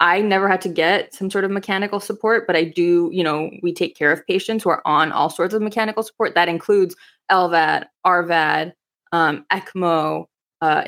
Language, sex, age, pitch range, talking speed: English, female, 20-39, 165-195 Hz, 195 wpm